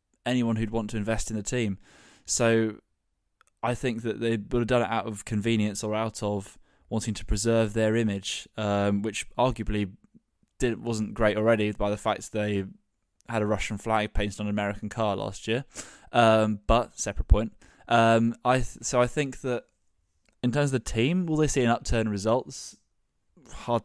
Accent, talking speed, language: British, 185 wpm, English